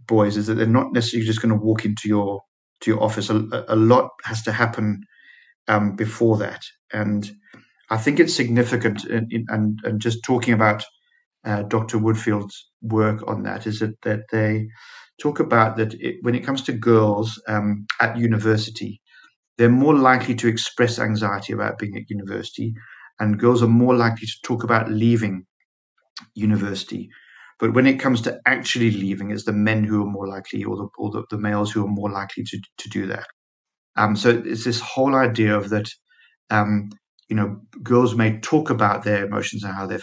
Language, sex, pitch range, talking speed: English, male, 105-115 Hz, 190 wpm